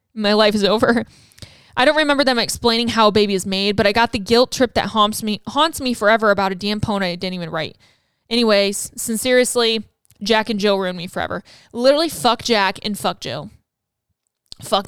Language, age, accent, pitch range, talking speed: English, 20-39, American, 205-250 Hz, 200 wpm